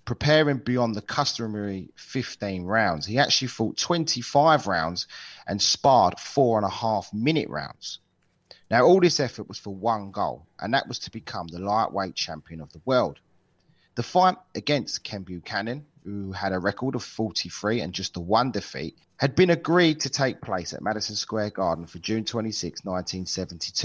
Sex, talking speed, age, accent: male, 170 wpm, 30-49, British